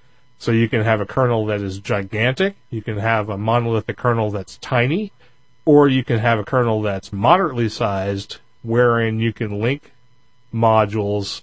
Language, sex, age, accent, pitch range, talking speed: English, male, 40-59, American, 110-125 Hz, 165 wpm